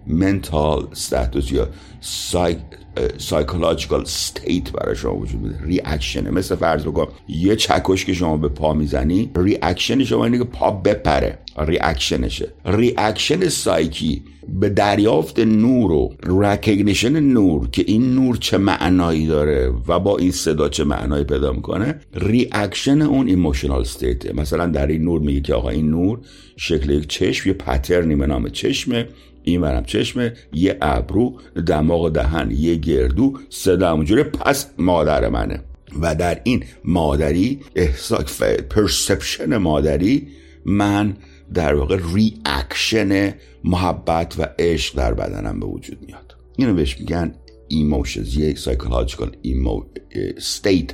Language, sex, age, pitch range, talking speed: Persian, male, 60-79, 70-95 Hz, 130 wpm